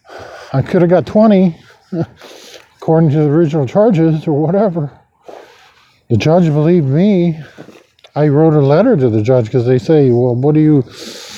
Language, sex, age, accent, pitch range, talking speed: English, male, 50-69, American, 125-165 Hz, 165 wpm